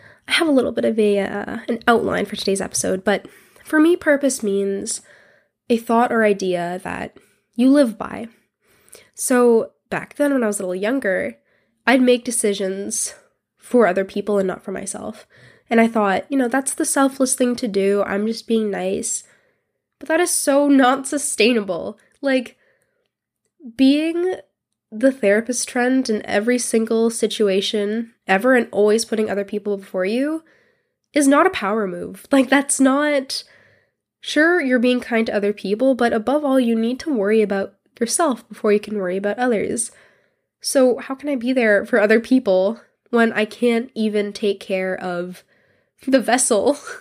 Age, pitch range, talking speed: 10-29, 205-265 Hz, 165 wpm